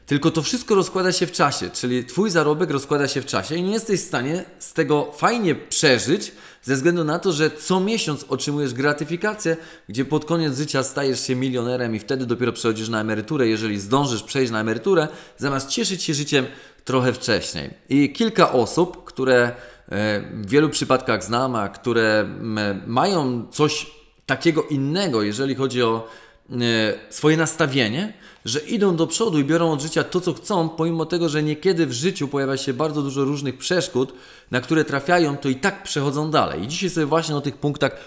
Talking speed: 180 wpm